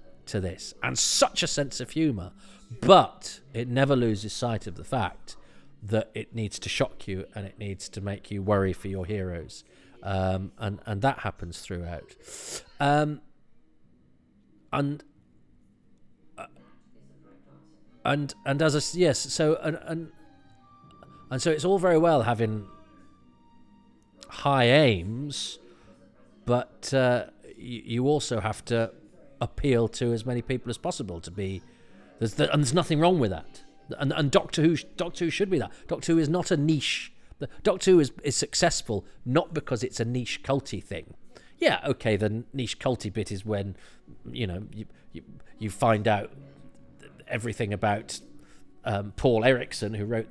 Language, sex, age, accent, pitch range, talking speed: English, male, 40-59, British, 100-140 Hz, 155 wpm